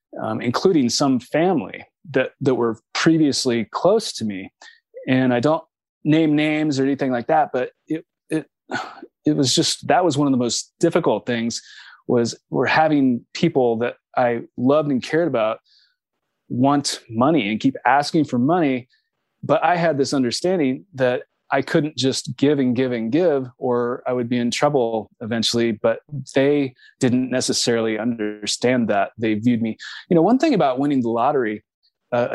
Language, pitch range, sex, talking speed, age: English, 120-150 Hz, male, 165 wpm, 20-39